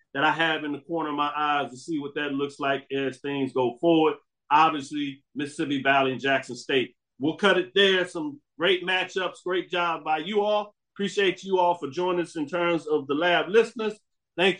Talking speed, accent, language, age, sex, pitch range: 205 wpm, American, English, 40-59, male, 145-185 Hz